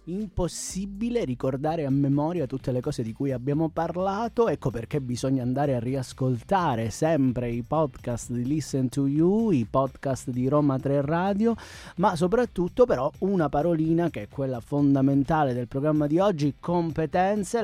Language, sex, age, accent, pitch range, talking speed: Italian, male, 30-49, native, 130-175 Hz, 150 wpm